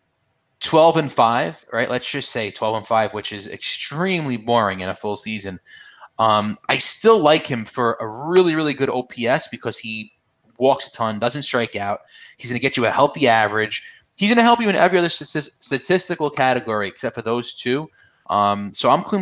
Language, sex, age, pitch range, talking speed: English, male, 20-39, 110-150 Hz, 185 wpm